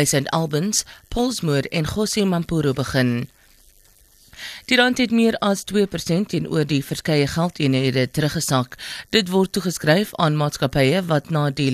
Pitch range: 145-195 Hz